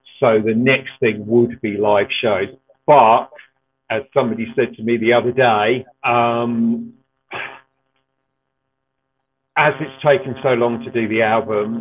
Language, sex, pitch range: English, male, 115-135 Hz